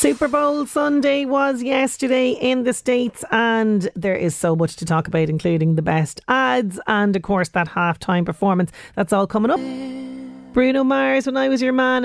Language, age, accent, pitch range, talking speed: English, 40-59, Irish, 190-250 Hz, 185 wpm